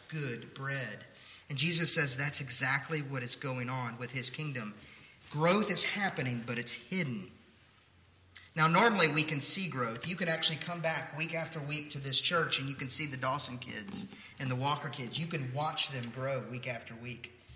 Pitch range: 125-165 Hz